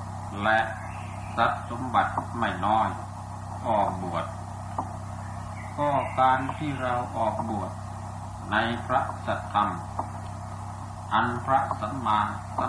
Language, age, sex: Thai, 50-69, male